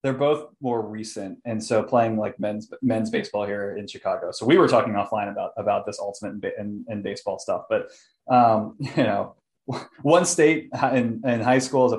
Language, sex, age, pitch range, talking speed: English, male, 20-39, 105-125 Hz, 190 wpm